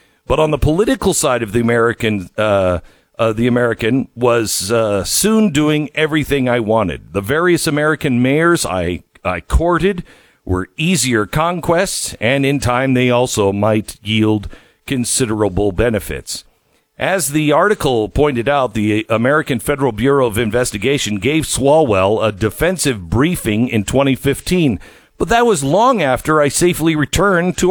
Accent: American